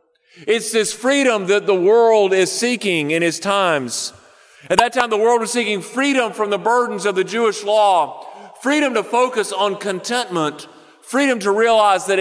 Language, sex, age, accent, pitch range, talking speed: English, male, 40-59, American, 175-230 Hz, 170 wpm